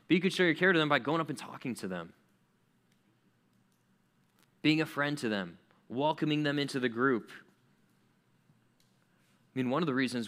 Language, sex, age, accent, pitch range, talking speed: English, male, 20-39, American, 115-150 Hz, 180 wpm